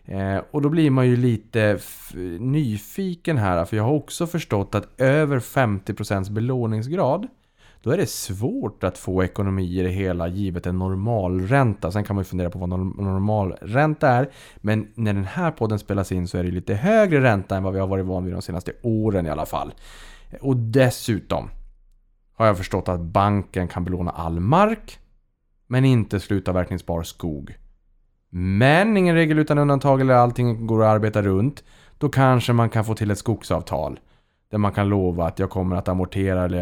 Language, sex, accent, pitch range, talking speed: Swedish, male, Norwegian, 90-120 Hz, 180 wpm